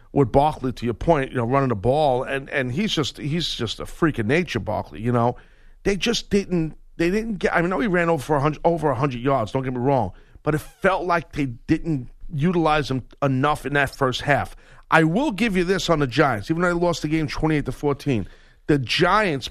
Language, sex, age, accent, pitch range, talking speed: English, male, 40-59, American, 125-170 Hz, 245 wpm